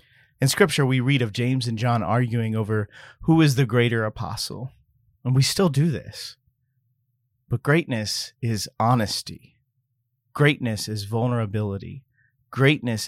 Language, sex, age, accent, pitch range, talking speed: English, male, 30-49, American, 110-130 Hz, 130 wpm